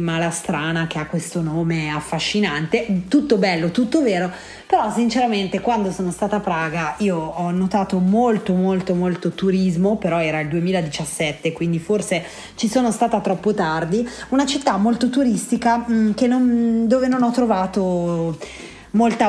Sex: female